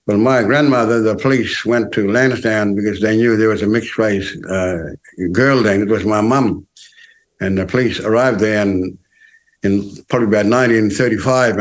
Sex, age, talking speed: male, 60-79, 170 wpm